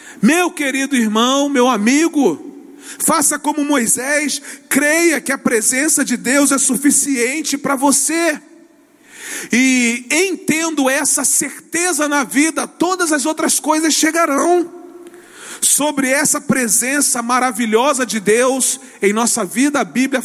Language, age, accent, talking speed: Portuguese, 40-59, Brazilian, 120 wpm